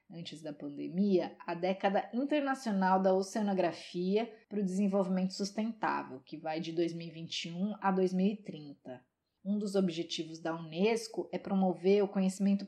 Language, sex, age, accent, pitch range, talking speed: Portuguese, female, 20-39, Brazilian, 175-220 Hz, 130 wpm